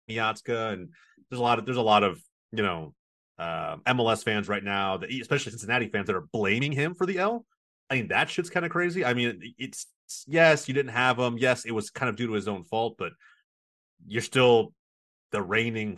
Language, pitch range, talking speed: English, 110-135 Hz, 215 wpm